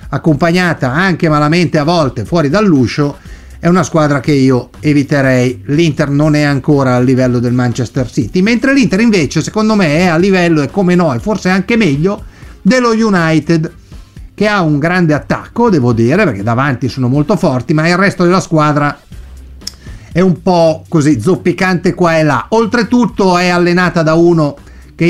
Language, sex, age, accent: Italian, male, 50-69, native